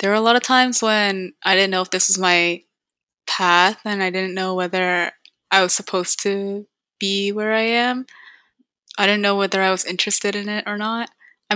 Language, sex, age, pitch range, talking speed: English, female, 10-29, 190-230 Hz, 210 wpm